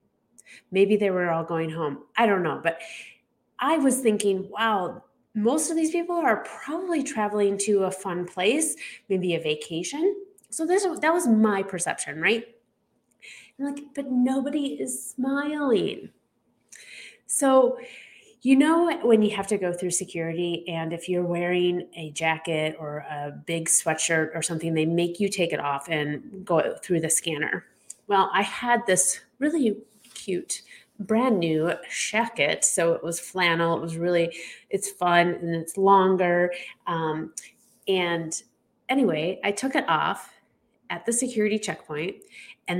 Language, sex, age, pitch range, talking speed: English, female, 30-49, 170-250 Hz, 150 wpm